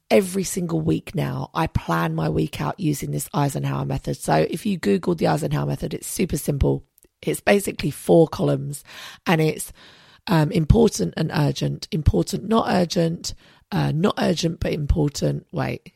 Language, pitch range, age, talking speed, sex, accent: English, 110-180 Hz, 30-49, 160 wpm, female, British